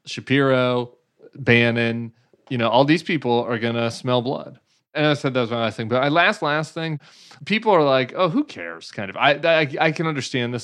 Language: English